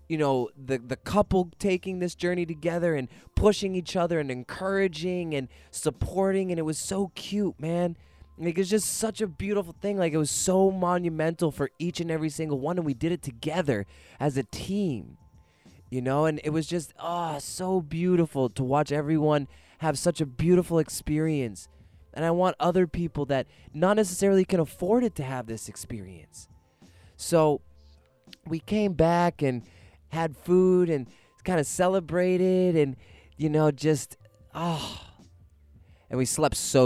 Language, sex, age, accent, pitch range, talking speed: English, male, 20-39, American, 115-170 Hz, 170 wpm